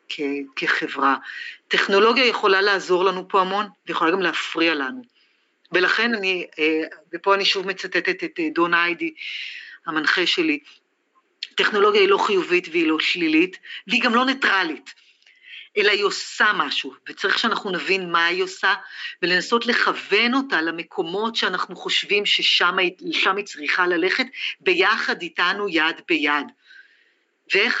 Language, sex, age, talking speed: Hebrew, female, 40-59, 125 wpm